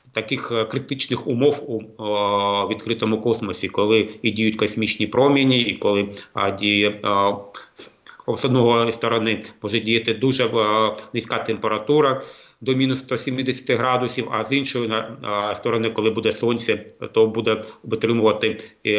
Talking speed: 135 wpm